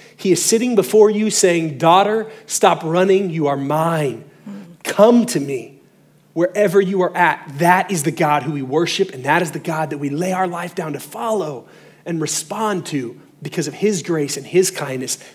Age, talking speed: 30-49, 190 wpm